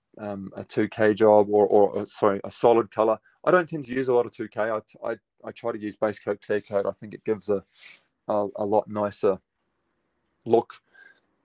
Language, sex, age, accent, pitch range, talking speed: English, male, 20-39, Australian, 105-120 Hz, 210 wpm